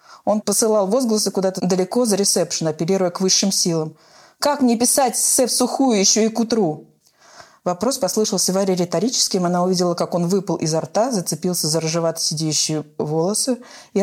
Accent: native